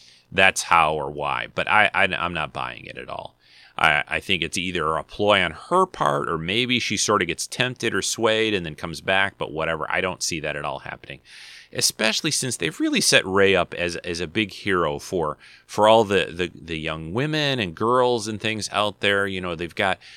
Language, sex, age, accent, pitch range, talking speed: English, male, 30-49, American, 85-120 Hz, 220 wpm